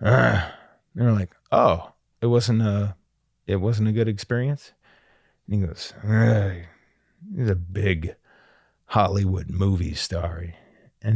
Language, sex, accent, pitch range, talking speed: English, male, American, 95-120 Hz, 125 wpm